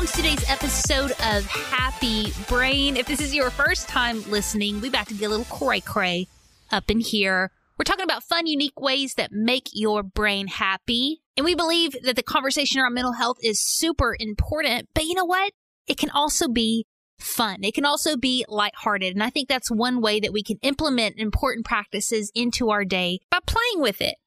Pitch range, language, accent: 210-290 Hz, English, American